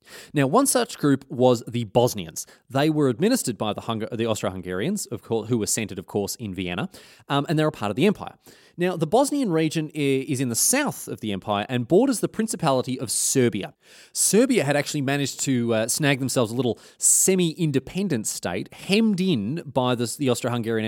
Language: English